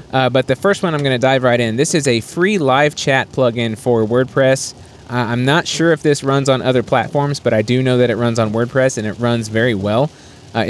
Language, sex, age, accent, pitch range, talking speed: English, male, 30-49, American, 115-135 Hz, 250 wpm